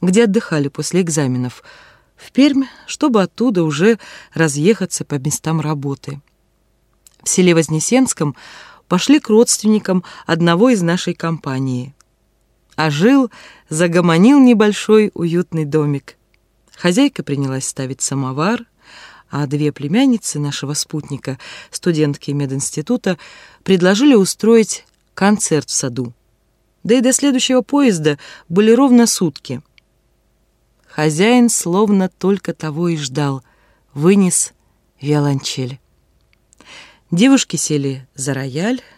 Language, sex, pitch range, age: Russian, female, 145-215 Hz, 20-39